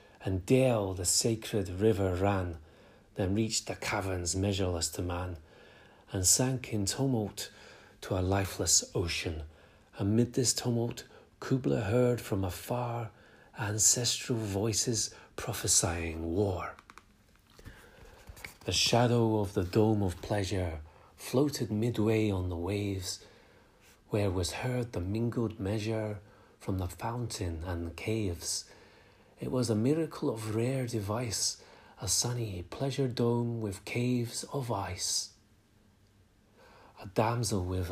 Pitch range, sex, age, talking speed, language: 95-120 Hz, male, 40-59, 115 wpm, English